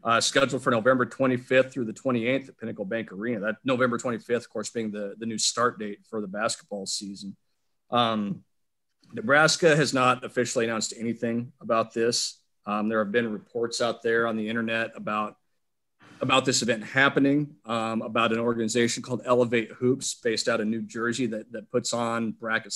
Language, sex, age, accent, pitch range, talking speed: English, male, 40-59, American, 115-130 Hz, 180 wpm